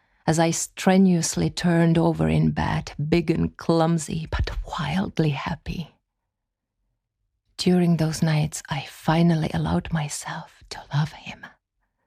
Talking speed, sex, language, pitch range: 115 wpm, female, Czech, 140-175 Hz